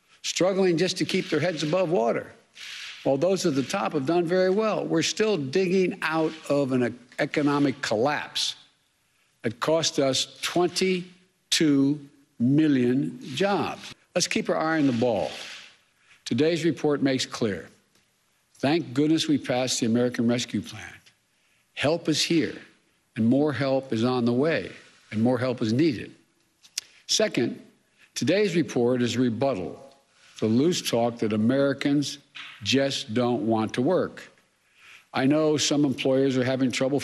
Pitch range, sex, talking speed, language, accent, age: 130-165 Hz, male, 145 wpm, English, American, 60-79